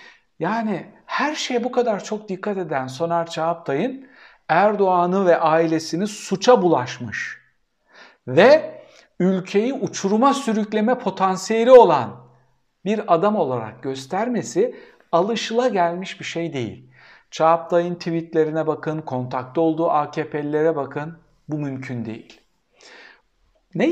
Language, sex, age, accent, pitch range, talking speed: Turkish, male, 60-79, native, 150-220 Hz, 100 wpm